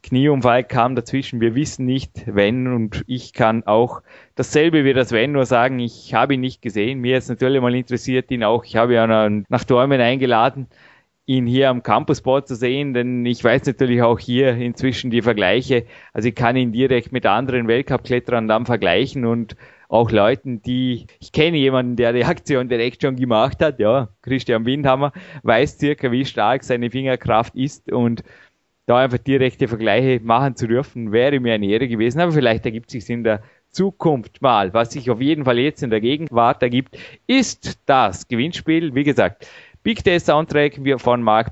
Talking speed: 180 wpm